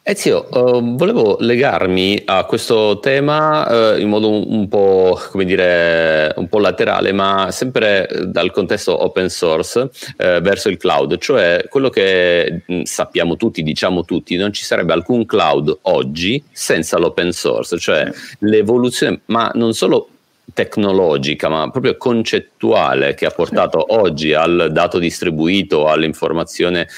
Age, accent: 40-59, native